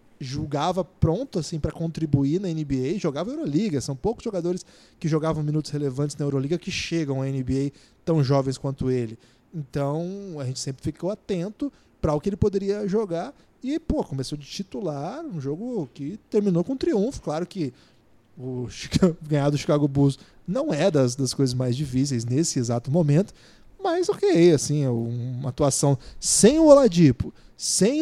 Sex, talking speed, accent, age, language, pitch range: male, 165 wpm, Brazilian, 20-39, Portuguese, 140-205 Hz